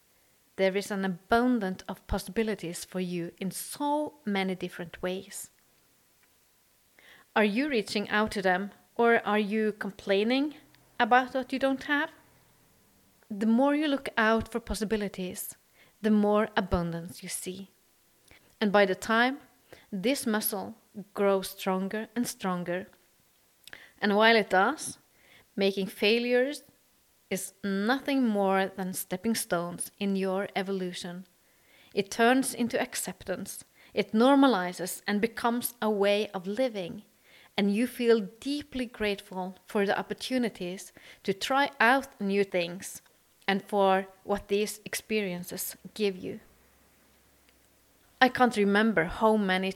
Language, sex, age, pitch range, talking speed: English, female, 30-49, 190-235 Hz, 125 wpm